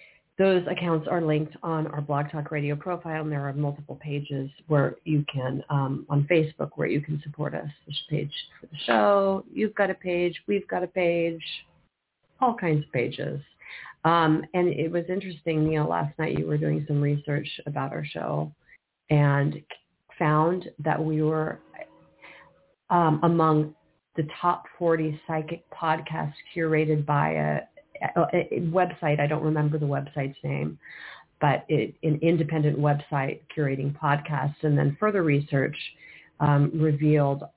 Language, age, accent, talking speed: English, 40-59, American, 155 wpm